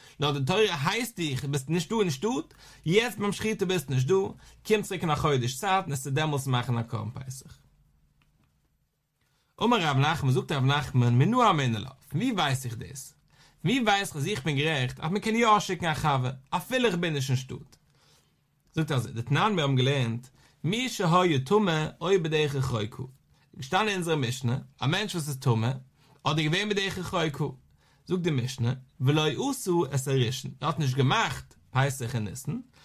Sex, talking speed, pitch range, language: male, 85 wpm, 130-185 Hz, English